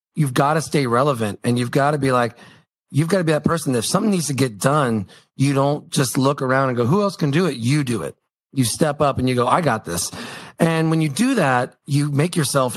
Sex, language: male, English